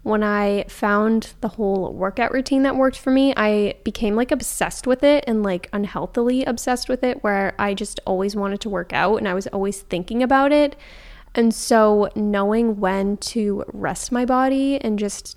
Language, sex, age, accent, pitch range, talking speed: English, female, 10-29, American, 205-245 Hz, 185 wpm